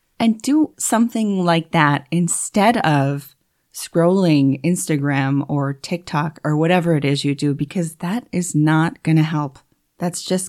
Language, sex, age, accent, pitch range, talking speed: English, female, 30-49, American, 145-180 Hz, 150 wpm